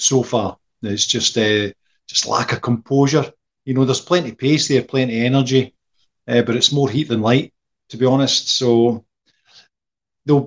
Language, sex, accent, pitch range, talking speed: English, male, British, 115-130 Hz, 180 wpm